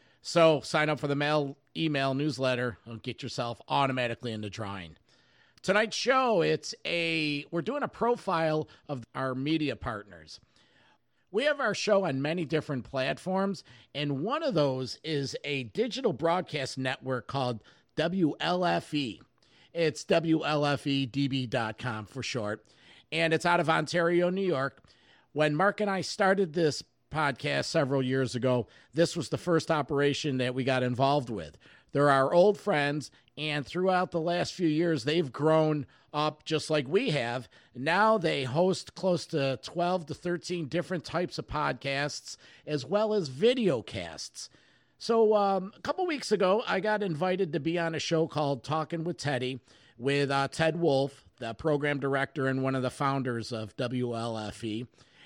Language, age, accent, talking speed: English, 50-69, American, 155 wpm